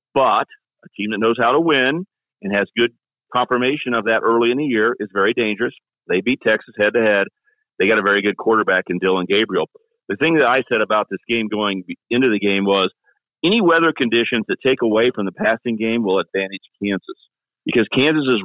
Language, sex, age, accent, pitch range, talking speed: English, male, 40-59, American, 100-125 Hz, 200 wpm